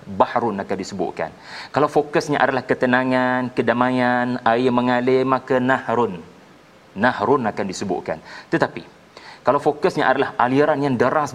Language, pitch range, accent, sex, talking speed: Malayalam, 110-135 Hz, Indonesian, male, 120 wpm